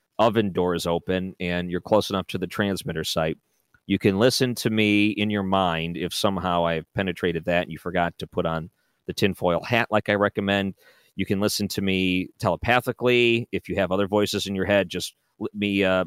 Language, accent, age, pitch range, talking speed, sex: English, American, 40-59, 90-115 Hz, 205 wpm, male